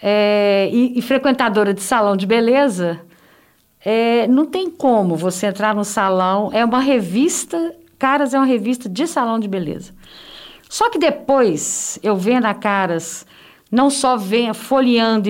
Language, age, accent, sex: Portuguese, 50-69, Brazilian, female